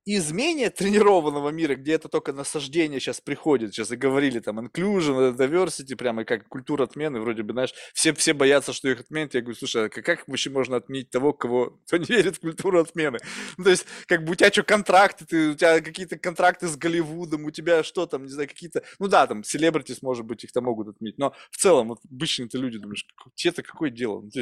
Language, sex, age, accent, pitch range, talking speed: Russian, male, 20-39, native, 145-195 Hz, 215 wpm